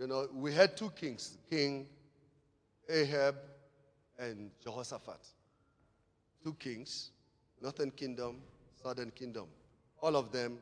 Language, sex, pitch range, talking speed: English, male, 115-155 Hz, 105 wpm